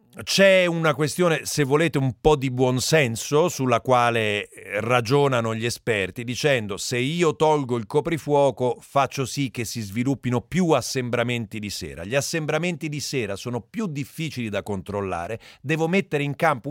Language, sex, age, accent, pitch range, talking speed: Italian, male, 40-59, native, 115-150 Hz, 150 wpm